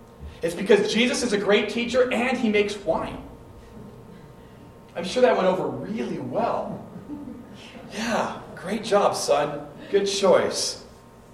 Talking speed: 125 wpm